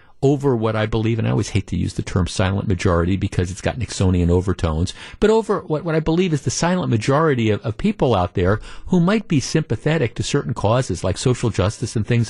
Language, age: English, 50-69